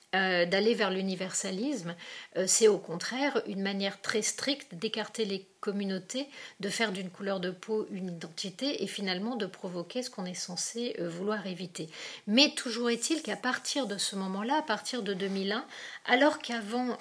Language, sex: French, female